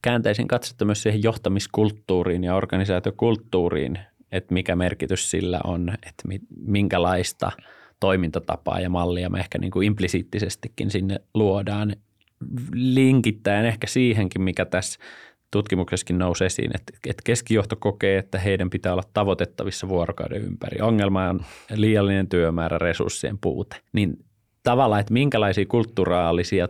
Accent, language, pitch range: native, Finnish, 90-110 Hz